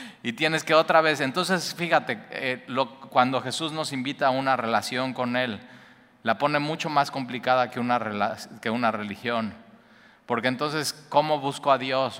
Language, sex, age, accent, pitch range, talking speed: Spanish, male, 30-49, Mexican, 120-145 Hz, 170 wpm